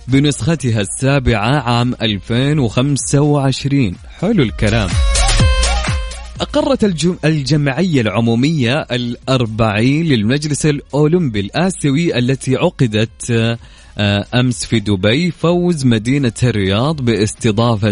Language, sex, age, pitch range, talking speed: Arabic, male, 20-39, 110-140 Hz, 75 wpm